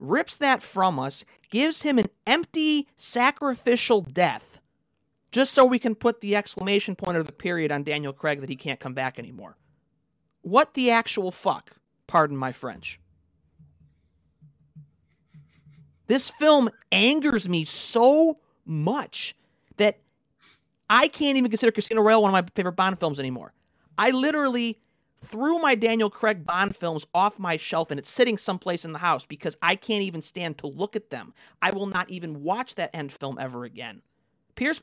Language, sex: English, male